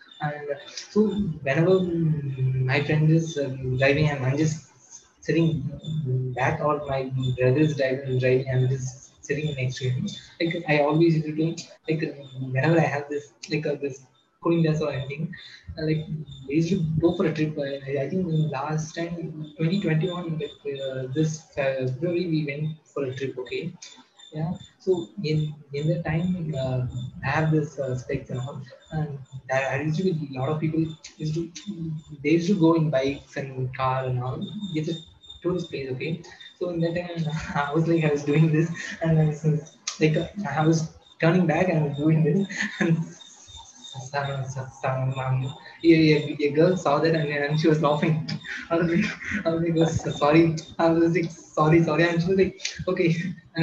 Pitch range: 140-165 Hz